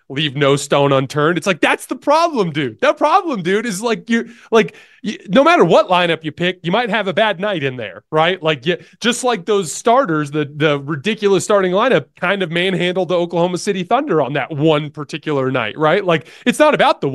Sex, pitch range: male, 140-195 Hz